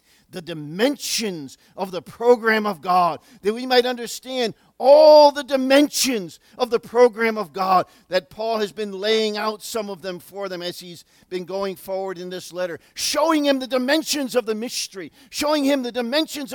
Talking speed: 180 wpm